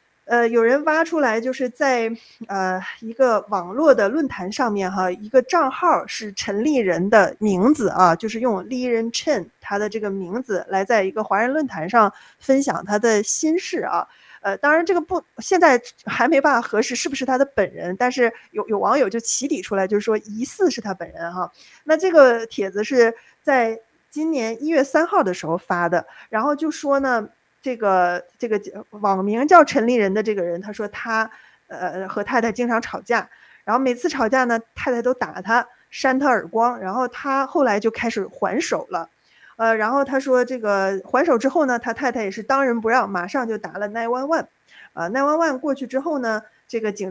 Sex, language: female, Chinese